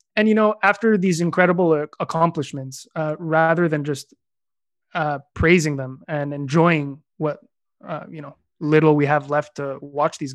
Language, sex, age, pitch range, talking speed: English, male, 20-39, 150-180 Hz, 155 wpm